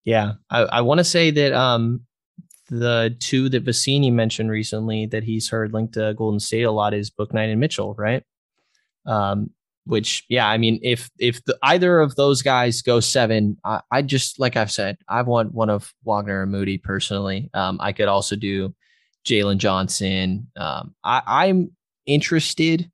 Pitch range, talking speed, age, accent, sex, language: 105-125 Hz, 180 wpm, 20-39, American, male, English